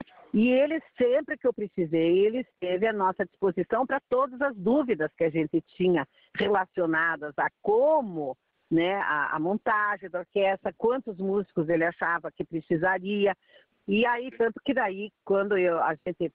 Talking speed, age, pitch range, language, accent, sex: 155 wpm, 50-69, 170-240 Hz, English, Brazilian, female